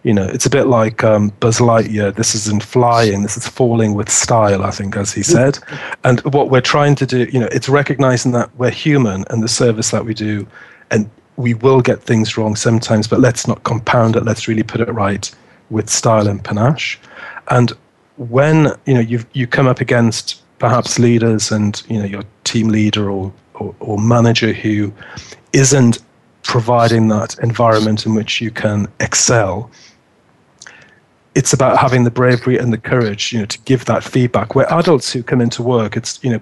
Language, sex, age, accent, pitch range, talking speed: English, male, 40-59, British, 110-125 Hz, 190 wpm